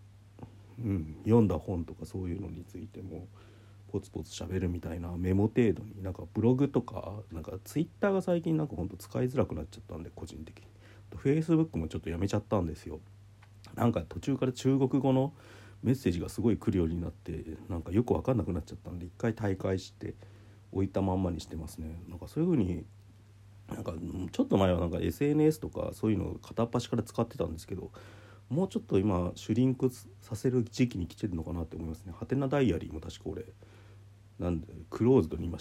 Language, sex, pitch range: Japanese, male, 90-115 Hz